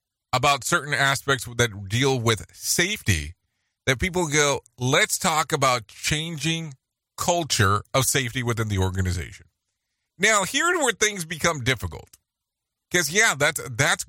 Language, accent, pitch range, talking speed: English, American, 110-155 Hz, 130 wpm